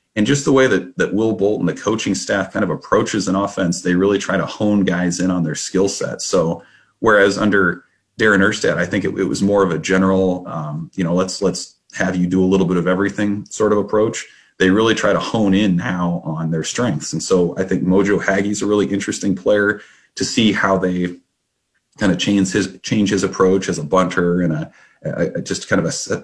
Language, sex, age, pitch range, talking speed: English, male, 30-49, 90-100 Hz, 230 wpm